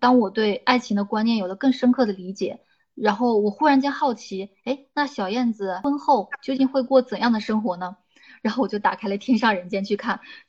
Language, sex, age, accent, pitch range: Chinese, female, 20-39, native, 200-250 Hz